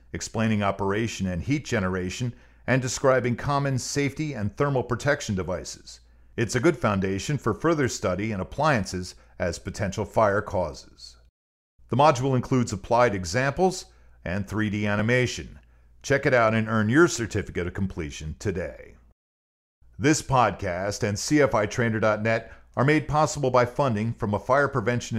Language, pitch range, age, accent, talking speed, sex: English, 95-125 Hz, 50-69, American, 135 wpm, male